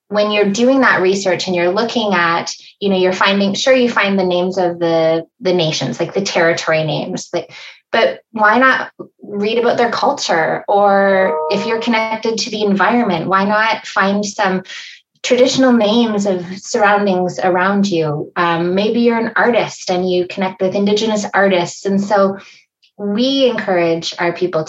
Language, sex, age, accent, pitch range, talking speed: English, female, 20-39, American, 175-210 Hz, 165 wpm